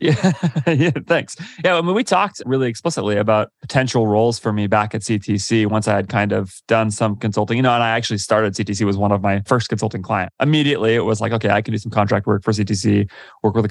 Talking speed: 245 wpm